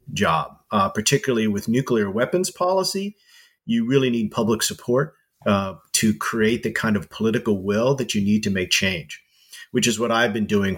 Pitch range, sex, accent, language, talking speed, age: 110-135 Hz, male, American, English, 180 wpm, 40-59